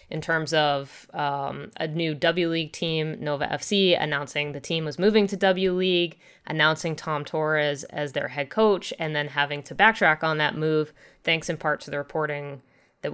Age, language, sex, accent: 20-39, English, female, American